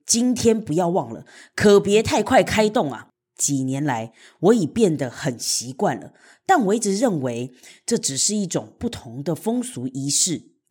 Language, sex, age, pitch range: Chinese, female, 20-39, 145-215 Hz